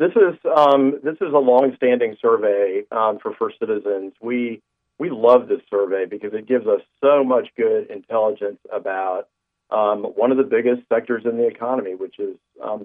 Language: English